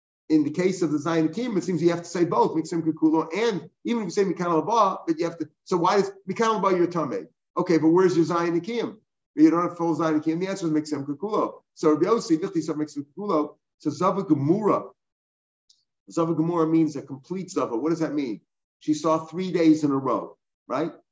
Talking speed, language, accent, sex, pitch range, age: 195 wpm, English, American, male, 150-175 Hz, 50-69